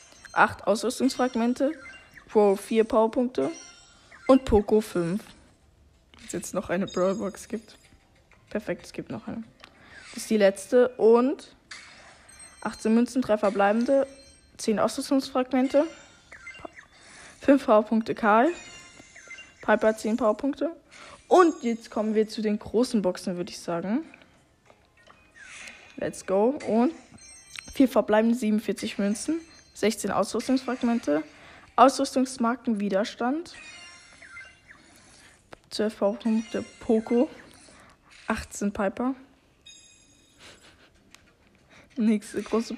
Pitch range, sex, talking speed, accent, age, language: 210-265 Hz, female, 90 wpm, German, 10-29, German